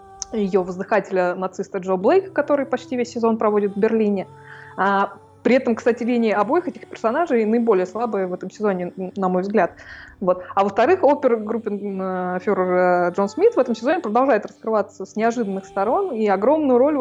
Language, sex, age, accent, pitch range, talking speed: Russian, female, 20-39, native, 190-240 Hz, 155 wpm